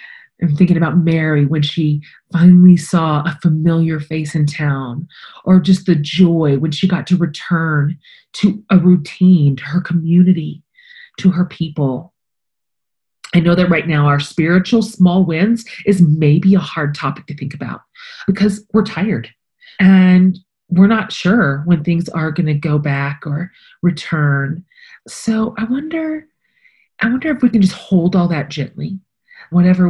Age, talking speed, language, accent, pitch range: 30-49, 155 wpm, English, American, 150-185 Hz